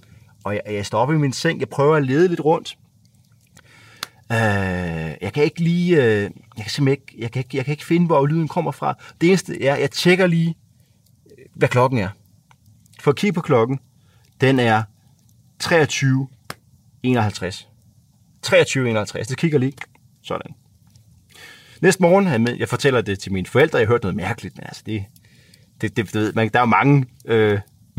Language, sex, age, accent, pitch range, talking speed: Danish, male, 30-49, native, 110-140 Hz, 175 wpm